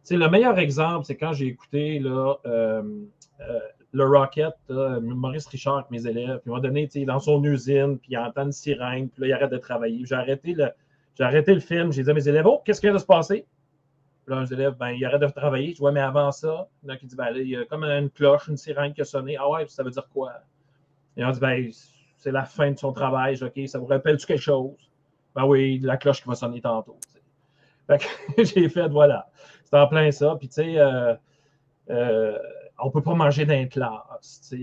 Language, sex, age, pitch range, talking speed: French, male, 30-49, 130-150 Hz, 245 wpm